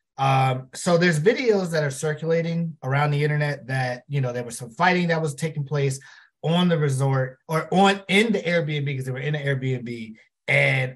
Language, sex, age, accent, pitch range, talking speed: English, male, 30-49, American, 130-165 Hz, 195 wpm